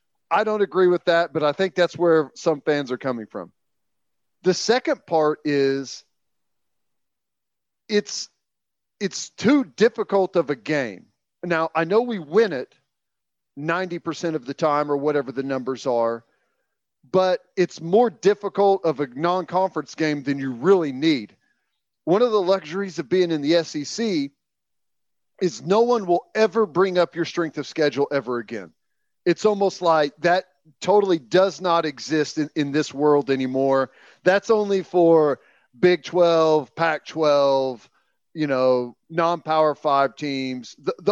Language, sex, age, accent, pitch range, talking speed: English, male, 40-59, American, 145-190 Hz, 145 wpm